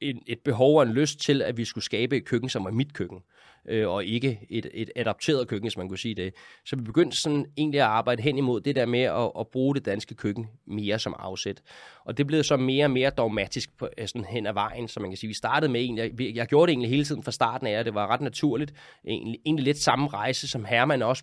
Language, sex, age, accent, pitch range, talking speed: Danish, male, 20-39, native, 110-145 Hz, 255 wpm